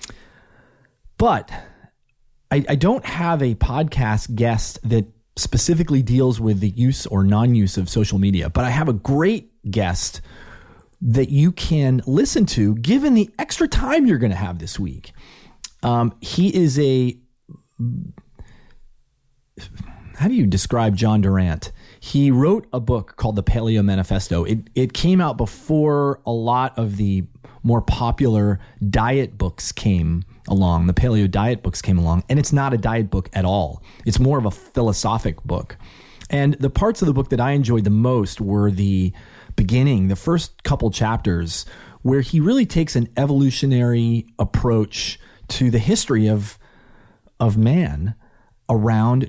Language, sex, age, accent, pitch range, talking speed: English, male, 30-49, American, 100-130 Hz, 150 wpm